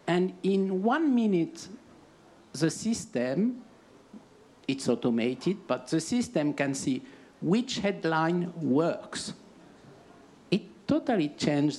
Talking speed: 95 wpm